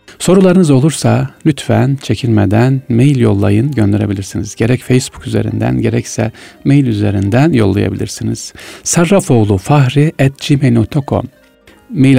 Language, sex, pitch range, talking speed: Turkish, male, 110-145 Hz, 80 wpm